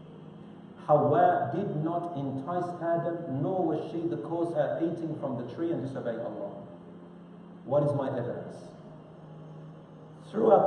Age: 40-59